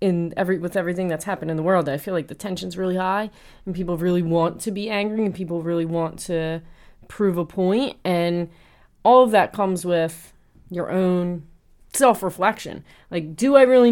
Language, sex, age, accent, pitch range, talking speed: English, female, 30-49, American, 170-215 Hz, 195 wpm